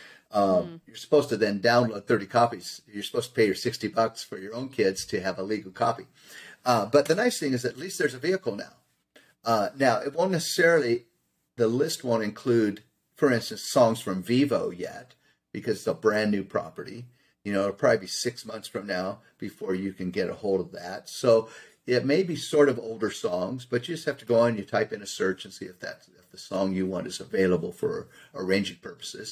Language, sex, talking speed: English, male, 220 wpm